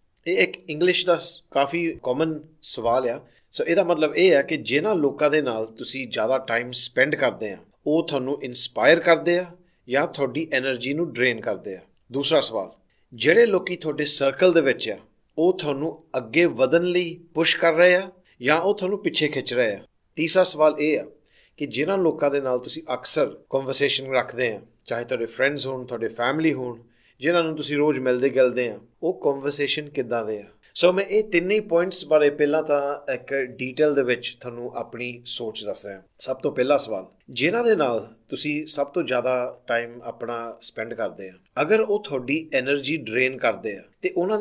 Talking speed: 155 wpm